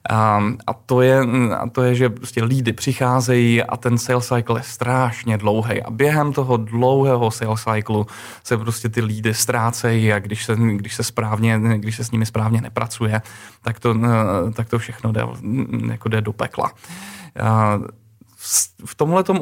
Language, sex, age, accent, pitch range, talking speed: Czech, male, 20-39, native, 115-135 Hz, 160 wpm